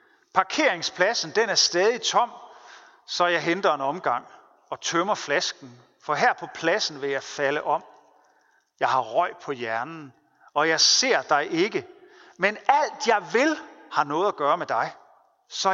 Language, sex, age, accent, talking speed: Danish, male, 40-59, native, 160 wpm